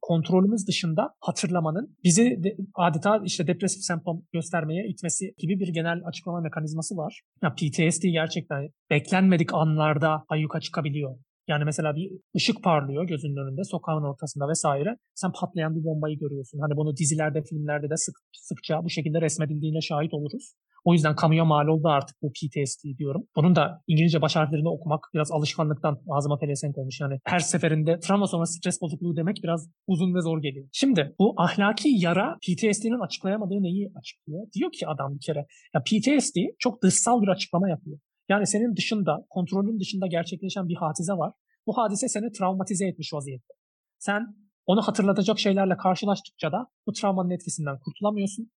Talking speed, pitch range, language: 160 wpm, 155-195 Hz, Turkish